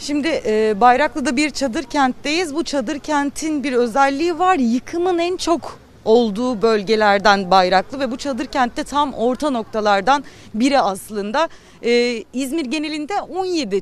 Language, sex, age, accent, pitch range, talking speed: Turkish, female, 40-59, native, 240-310 Hz, 135 wpm